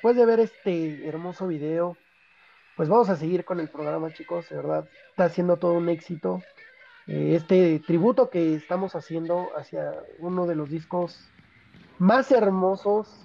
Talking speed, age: 150 wpm, 30-49